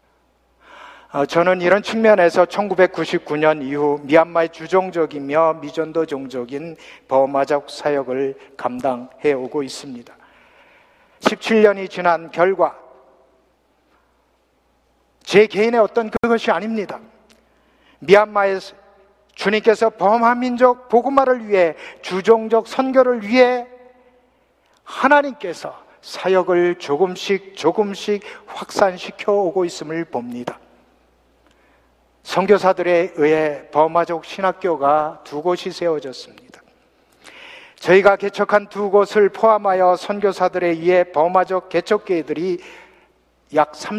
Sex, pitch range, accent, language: male, 155-210 Hz, native, Korean